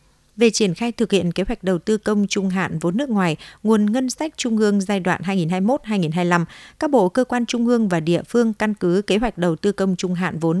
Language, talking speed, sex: Vietnamese, 240 wpm, female